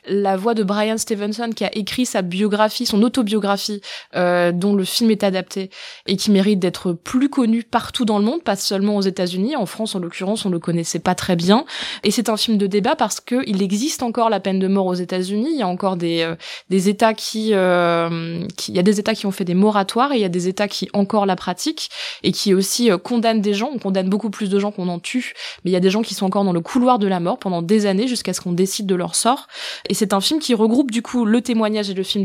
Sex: female